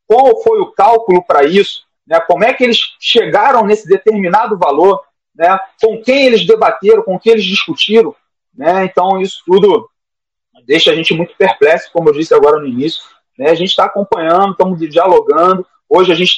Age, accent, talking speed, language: 30-49, Brazilian, 180 wpm, Portuguese